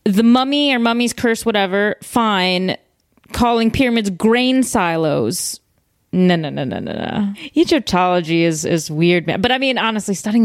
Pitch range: 175-230 Hz